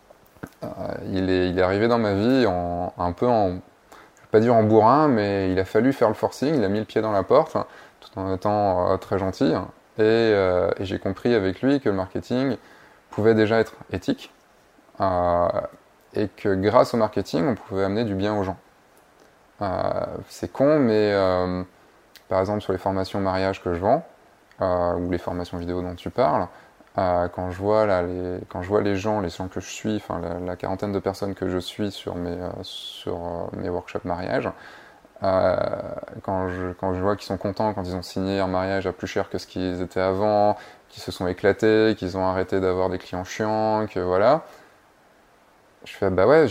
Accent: French